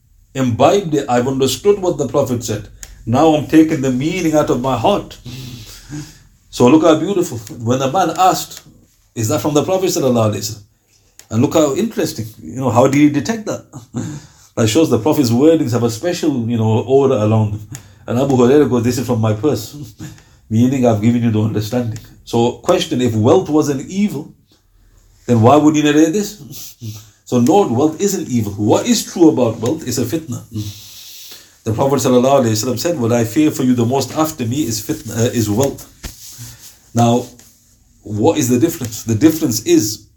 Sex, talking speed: male, 180 wpm